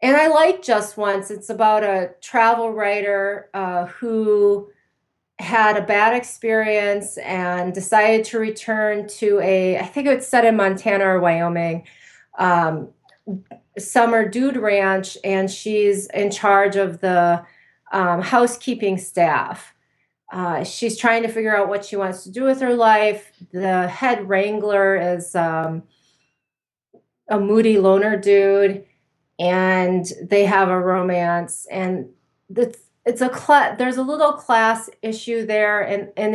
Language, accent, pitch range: English, American, 185-220 Hz